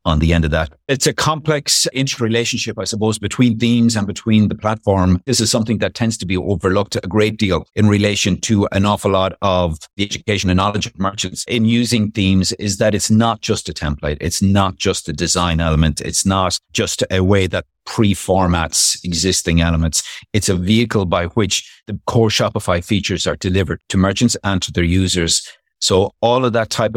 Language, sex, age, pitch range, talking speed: English, male, 50-69, 85-110 Hz, 195 wpm